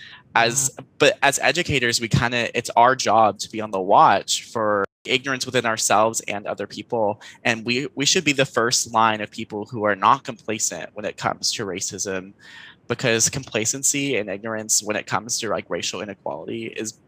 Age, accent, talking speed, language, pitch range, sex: 20-39, American, 185 wpm, English, 105-130 Hz, male